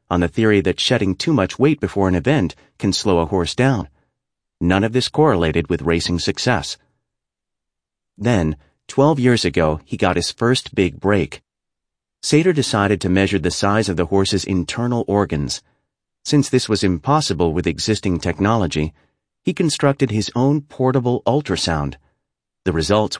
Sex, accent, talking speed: male, American, 155 wpm